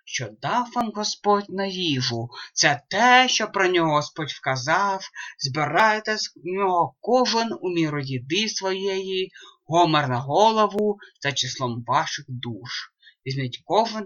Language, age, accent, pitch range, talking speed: Russian, 30-49, native, 135-205 Hz, 130 wpm